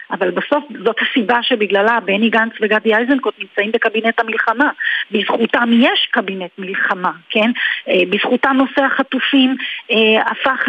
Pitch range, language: 215-275 Hz, Hebrew